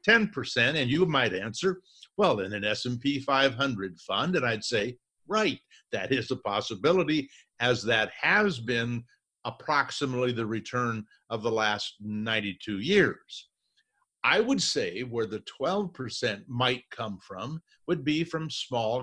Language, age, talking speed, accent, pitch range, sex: English, 50-69, 135 wpm, American, 115-155 Hz, male